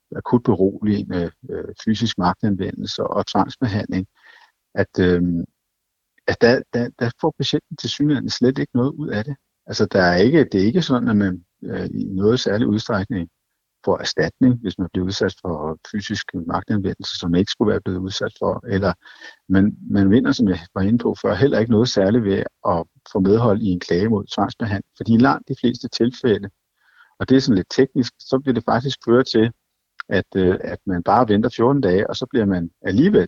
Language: Danish